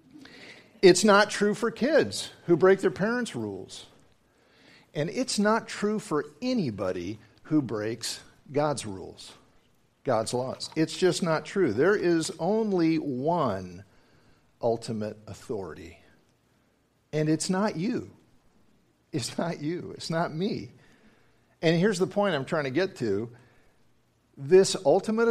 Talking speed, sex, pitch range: 125 wpm, male, 120-175 Hz